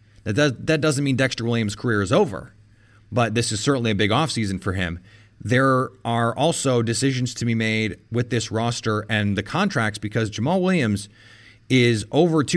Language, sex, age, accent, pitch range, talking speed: English, male, 30-49, American, 105-130 Hz, 165 wpm